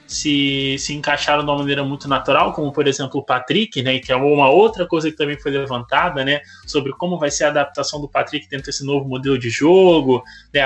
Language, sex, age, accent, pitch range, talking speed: Portuguese, male, 20-39, Brazilian, 135-160 Hz, 220 wpm